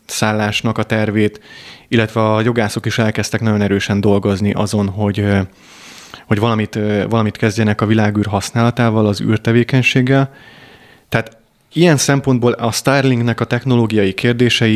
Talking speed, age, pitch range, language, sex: 120 wpm, 30-49, 105-120 Hz, Hungarian, male